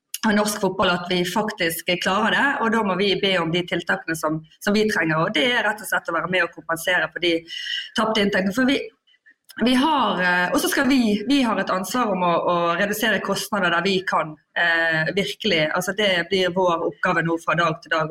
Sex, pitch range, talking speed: female, 175-225 Hz, 215 wpm